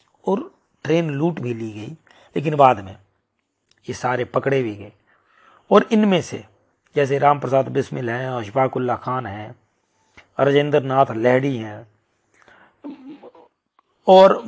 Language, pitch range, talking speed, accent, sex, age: Hindi, 130-185 Hz, 125 wpm, native, male, 40-59